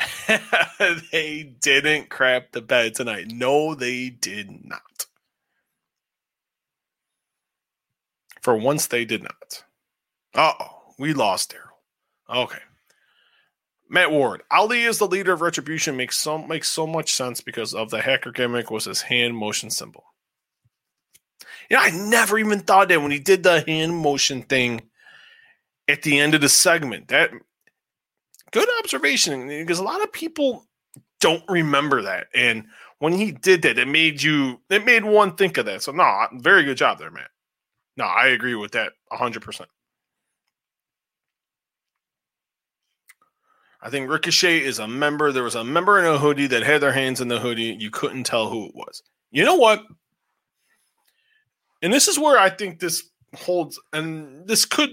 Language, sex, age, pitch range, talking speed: English, male, 20-39, 135-205 Hz, 155 wpm